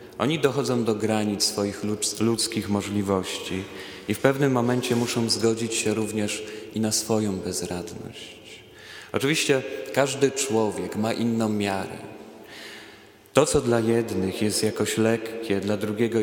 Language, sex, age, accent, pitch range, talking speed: Polish, male, 30-49, native, 100-115 Hz, 125 wpm